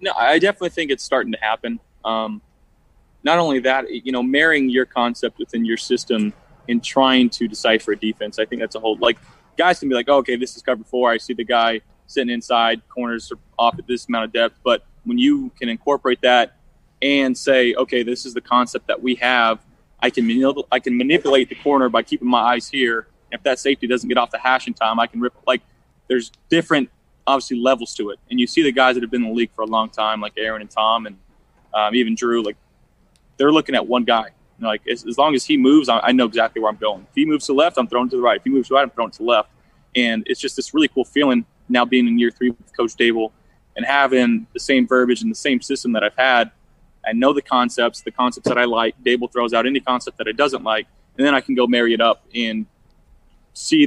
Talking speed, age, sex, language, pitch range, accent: 250 wpm, 20-39, male, English, 115-135 Hz, American